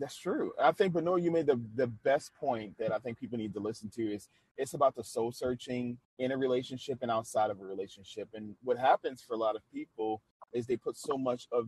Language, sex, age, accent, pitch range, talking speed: English, male, 30-49, American, 105-120 Hz, 245 wpm